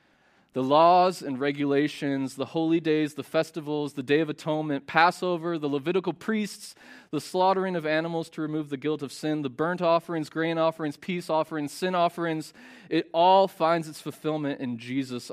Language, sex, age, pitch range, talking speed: English, male, 20-39, 130-170 Hz, 170 wpm